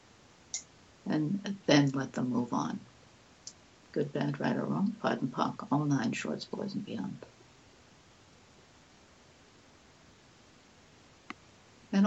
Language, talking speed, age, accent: English, 100 wpm, 60-79, American